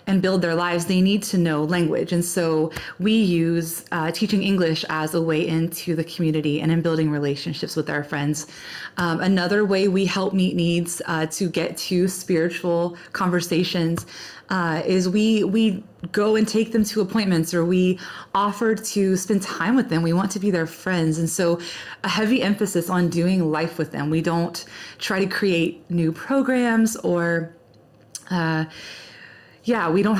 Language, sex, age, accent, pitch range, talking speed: English, female, 20-39, American, 165-195 Hz, 175 wpm